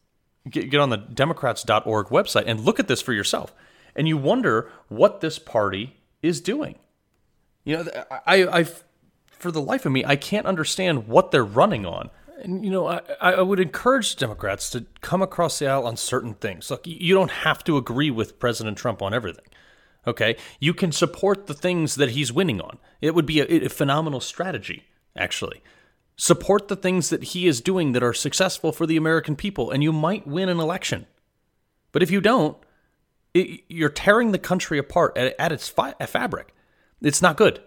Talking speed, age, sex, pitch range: 190 wpm, 30-49, male, 120-170 Hz